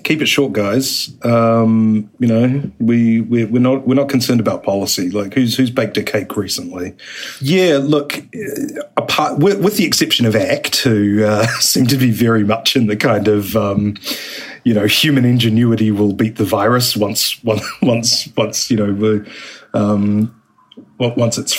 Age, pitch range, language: 30-49, 105-125 Hz, English